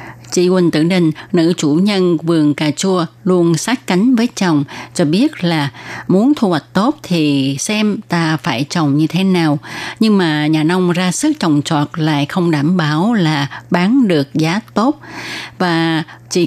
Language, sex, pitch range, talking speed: Vietnamese, female, 150-185 Hz, 180 wpm